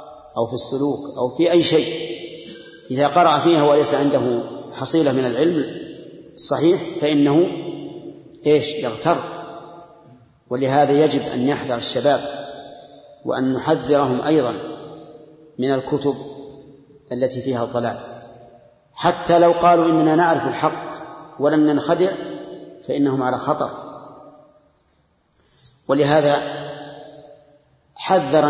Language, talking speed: Arabic, 95 wpm